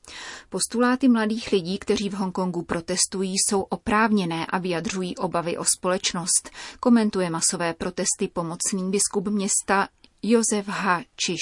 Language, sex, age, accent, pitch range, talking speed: Czech, female, 30-49, native, 180-205 Hz, 120 wpm